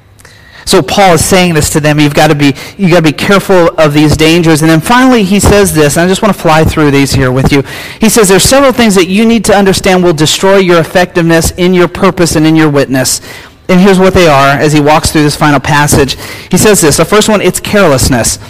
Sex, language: male, English